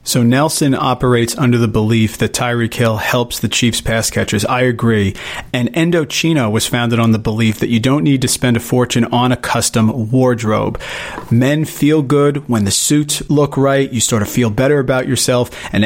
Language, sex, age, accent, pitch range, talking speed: English, male, 40-59, American, 115-135 Hz, 195 wpm